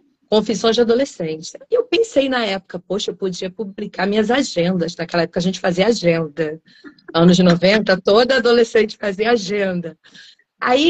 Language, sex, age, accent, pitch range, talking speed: Portuguese, female, 40-59, Brazilian, 190-260 Hz, 150 wpm